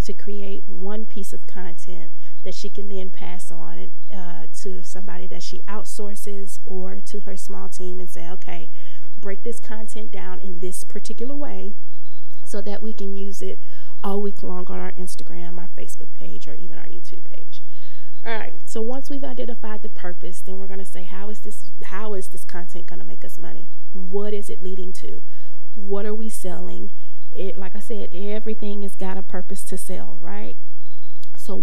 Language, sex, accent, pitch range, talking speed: English, female, American, 185-205 Hz, 190 wpm